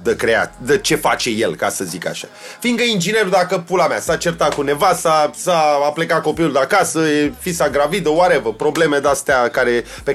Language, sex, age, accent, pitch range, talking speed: Romanian, male, 30-49, native, 160-220 Hz, 200 wpm